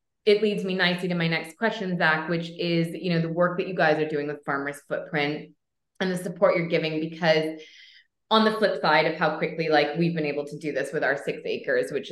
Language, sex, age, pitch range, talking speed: English, female, 20-39, 150-180 Hz, 240 wpm